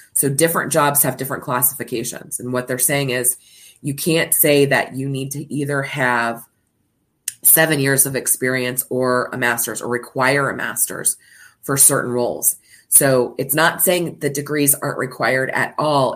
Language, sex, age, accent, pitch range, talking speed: English, female, 20-39, American, 125-145 Hz, 165 wpm